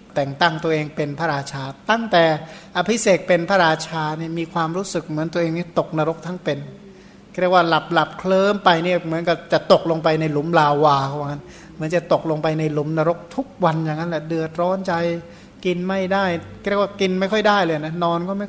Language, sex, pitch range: Thai, male, 150-180 Hz